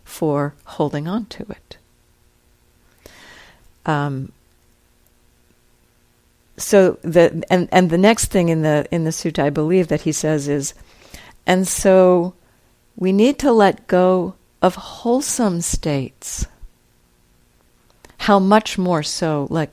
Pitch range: 135-180 Hz